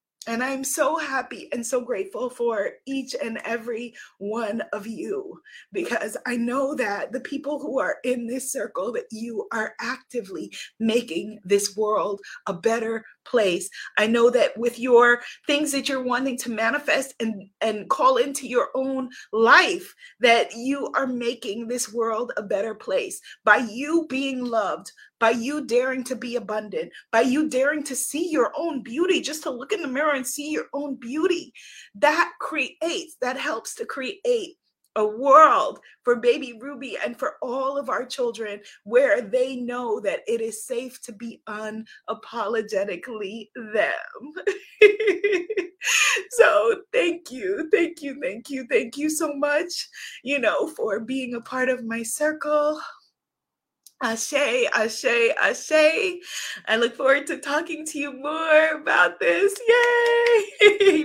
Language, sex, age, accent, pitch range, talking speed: English, female, 30-49, American, 235-325 Hz, 150 wpm